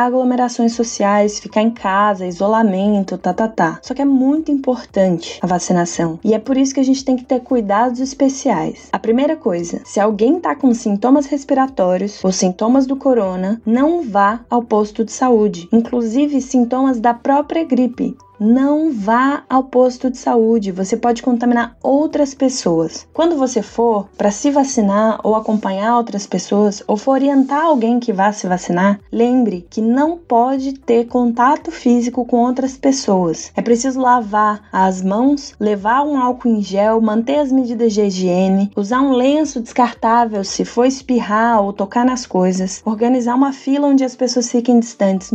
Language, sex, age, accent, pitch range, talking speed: Portuguese, female, 20-39, Brazilian, 210-265 Hz, 165 wpm